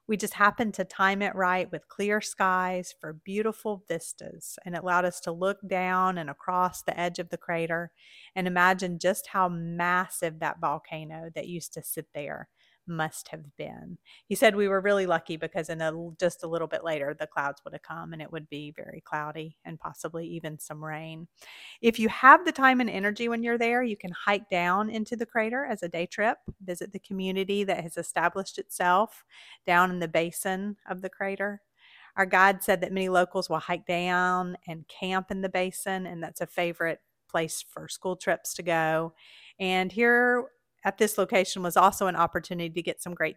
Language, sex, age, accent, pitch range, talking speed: English, female, 40-59, American, 165-195 Hz, 200 wpm